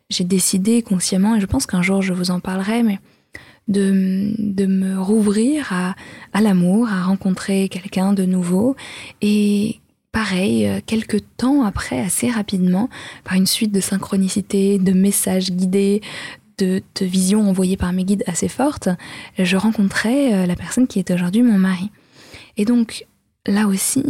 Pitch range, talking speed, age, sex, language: 190-230 Hz, 155 wpm, 20-39, female, French